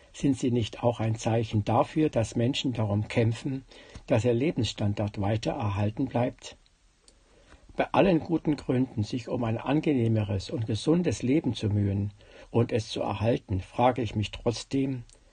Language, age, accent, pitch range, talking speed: German, 60-79, German, 105-130 Hz, 150 wpm